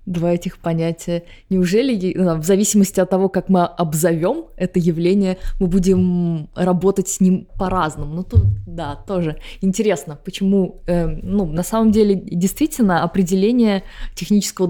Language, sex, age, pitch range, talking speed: Russian, female, 20-39, 165-195 Hz, 135 wpm